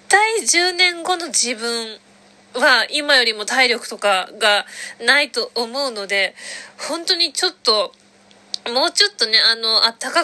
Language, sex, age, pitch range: Japanese, female, 20-39, 235-325 Hz